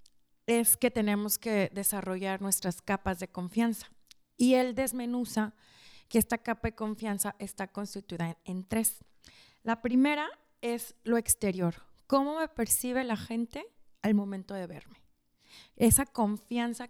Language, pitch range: Spanish, 185-230 Hz